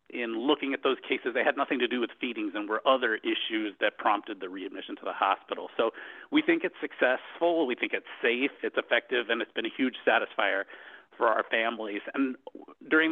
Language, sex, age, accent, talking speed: English, male, 40-59, American, 205 wpm